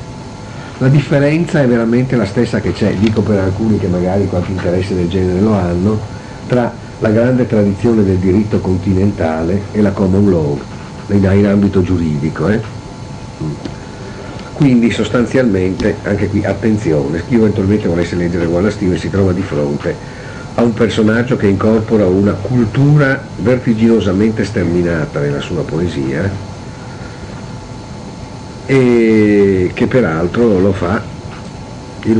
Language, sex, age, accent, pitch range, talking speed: Italian, male, 50-69, native, 95-120 Hz, 125 wpm